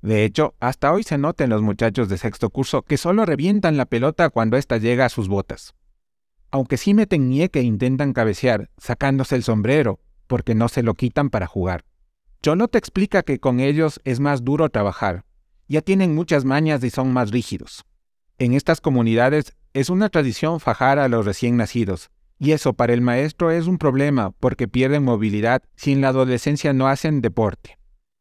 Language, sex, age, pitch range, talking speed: Spanish, male, 40-59, 115-150 Hz, 180 wpm